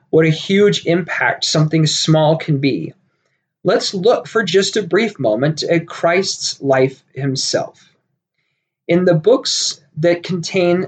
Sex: male